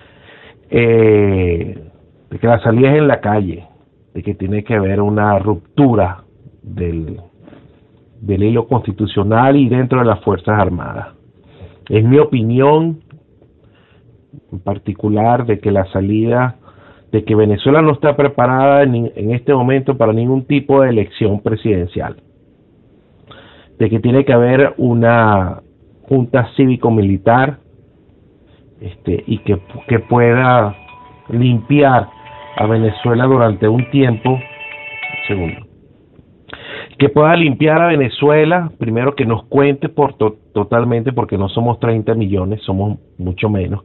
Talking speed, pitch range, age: 125 wpm, 100-130 Hz, 50-69